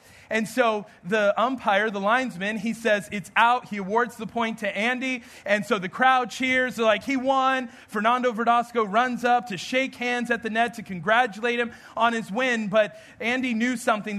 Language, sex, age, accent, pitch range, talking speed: English, male, 40-59, American, 205-245 Hz, 190 wpm